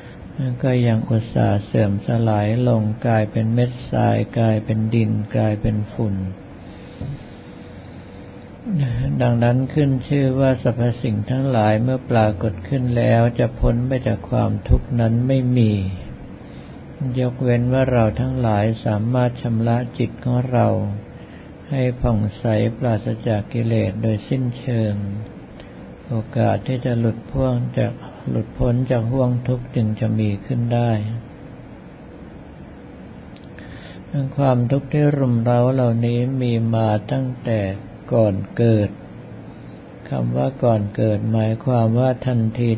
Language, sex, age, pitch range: Thai, male, 60-79, 105-125 Hz